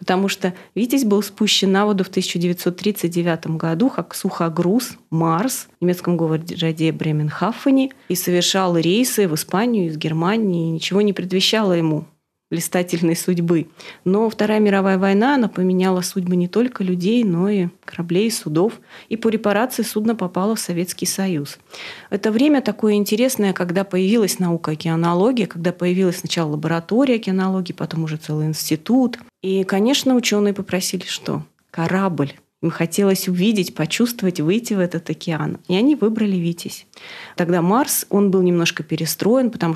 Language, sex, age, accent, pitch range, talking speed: Russian, female, 30-49, native, 170-210 Hz, 145 wpm